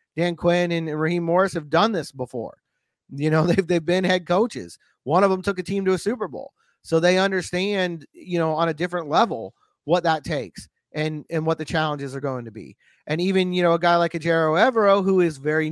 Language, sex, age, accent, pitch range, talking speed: English, male, 30-49, American, 160-190 Hz, 225 wpm